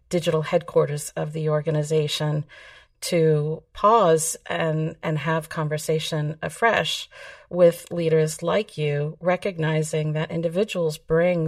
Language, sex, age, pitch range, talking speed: English, female, 50-69, 155-165 Hz, 105 wpm